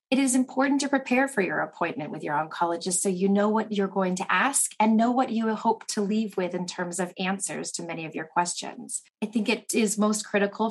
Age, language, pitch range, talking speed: 30-49, English, 190-225 Hz, 235 wpm